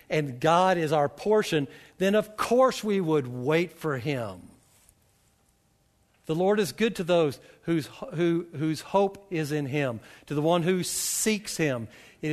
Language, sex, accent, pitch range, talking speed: English, male, American, 145-195 Hz, 160 wpm